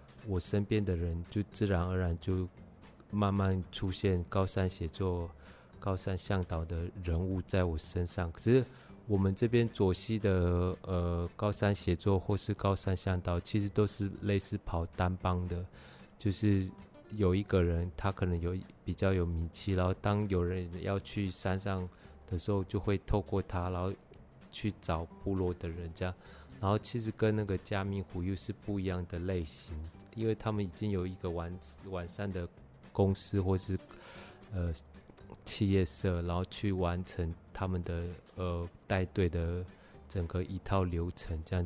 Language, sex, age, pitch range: Chinese, male, 20-39, 85-100 Hz